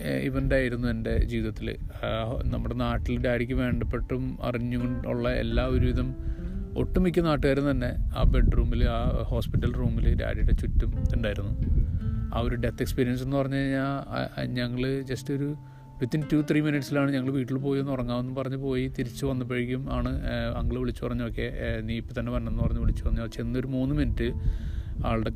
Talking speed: 140 wpm